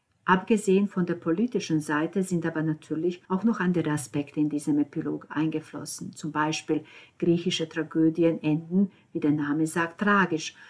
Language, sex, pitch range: German, female, 165-210 Hz